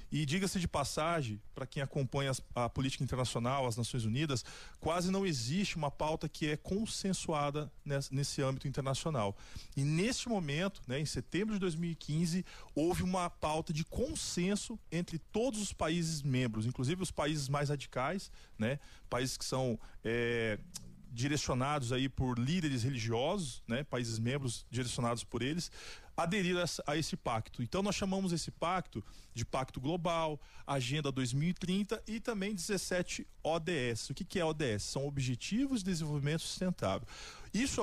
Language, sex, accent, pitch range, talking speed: Portuguese, male, Brazilian, 130-175 Hz, 140 wpm